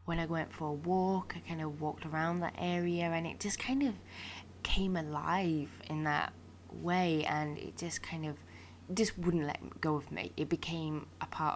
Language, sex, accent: English, female, British